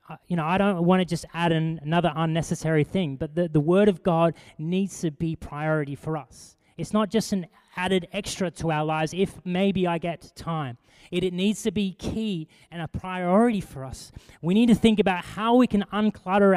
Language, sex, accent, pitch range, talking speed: English, male, Australian, 150-190 Hz, 215 wpm